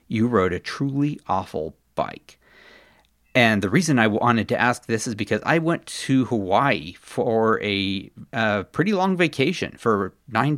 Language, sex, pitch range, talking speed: English, male, 100-130 Hz, 160 wpm